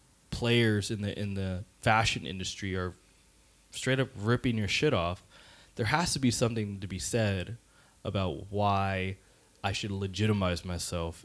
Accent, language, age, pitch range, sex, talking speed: American, English, 20-39, 95-120 Hz, male, 150 wpm